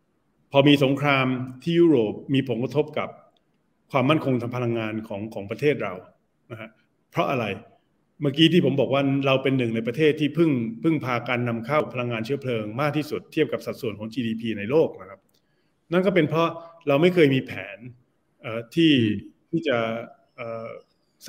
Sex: male